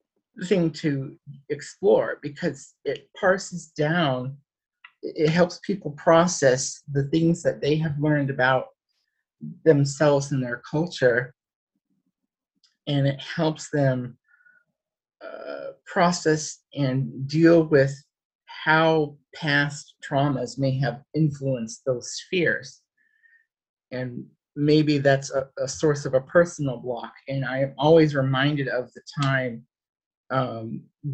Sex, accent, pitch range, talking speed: male, American, 125-155 Hz, 110 wpm